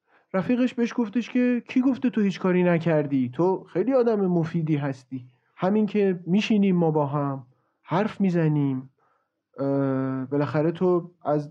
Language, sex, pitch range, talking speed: Persian, male, 145-195 Hz, 135 wpm